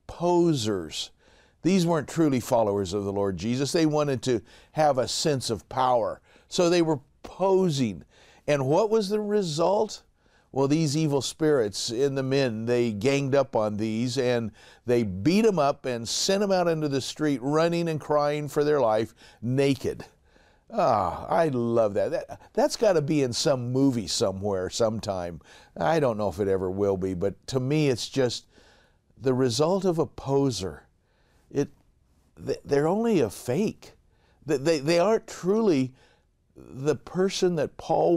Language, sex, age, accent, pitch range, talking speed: English, male, 50-69, American, 115-165 Hz, 160 wpm